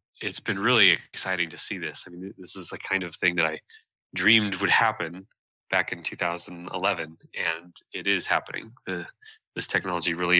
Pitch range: 90-115 Hz